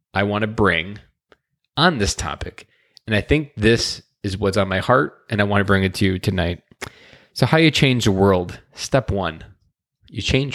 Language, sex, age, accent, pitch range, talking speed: English, male, 20-39, American, 95-120 Hz, 200 wpm